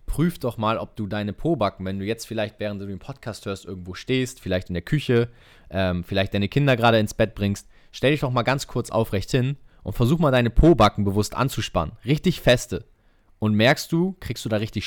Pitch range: 100-125 Hz